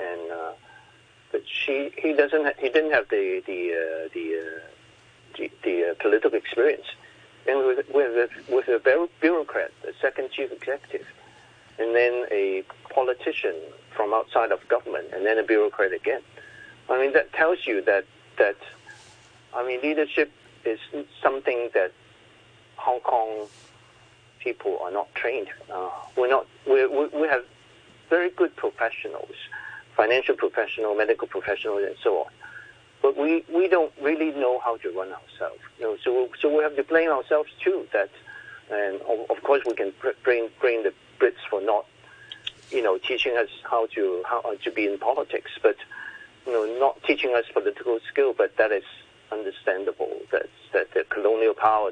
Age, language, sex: 50-69, English, male